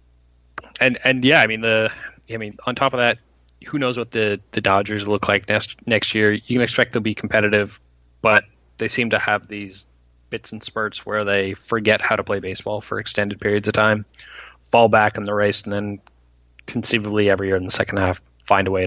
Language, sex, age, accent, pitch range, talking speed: English, male, 20-39, American, 95-115 Hz, 215 wpm